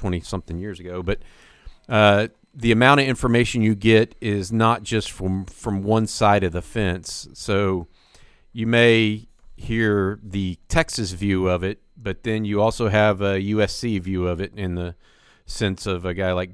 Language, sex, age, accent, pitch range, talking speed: English, male, 40-59, American, 90-110 Hz, 170 wpm